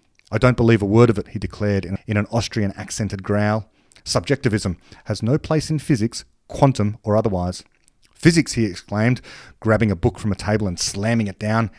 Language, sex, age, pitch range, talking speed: English, male, 30-49, 105-140 Hz, 185 wpm